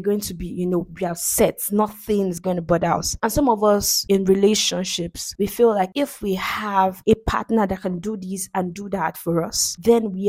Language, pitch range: English, 190-255 Hz